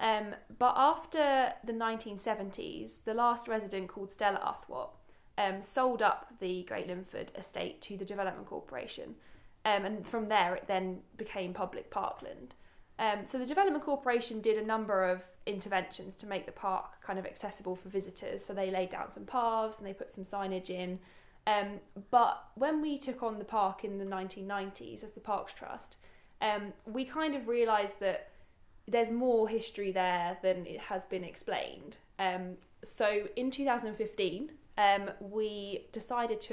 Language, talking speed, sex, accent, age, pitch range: English, 165 wpm, female, British, 10-29, 195-230 Hz